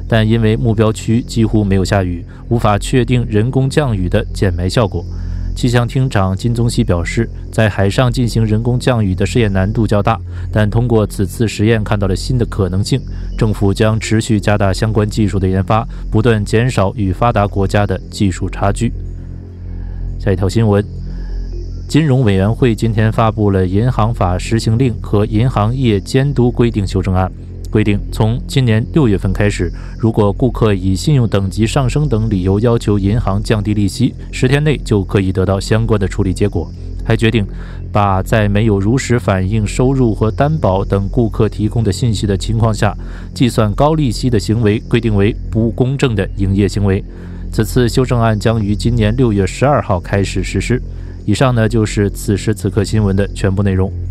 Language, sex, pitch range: Korean, male, 95-115 Hz